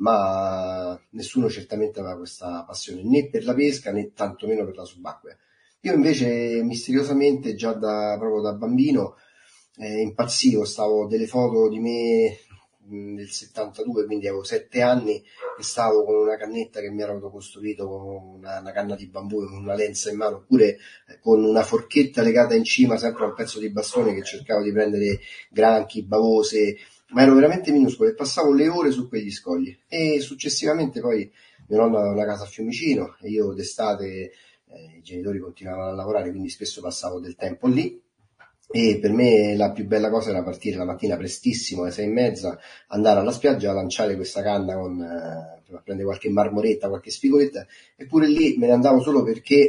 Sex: male